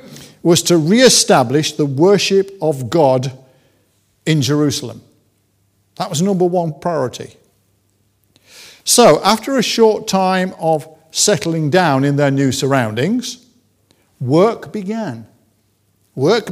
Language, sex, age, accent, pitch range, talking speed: English, male, 50-69, British, 130-195 Hz, 105 wpm